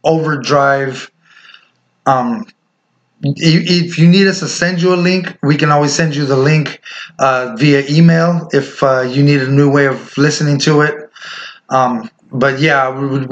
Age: 20-39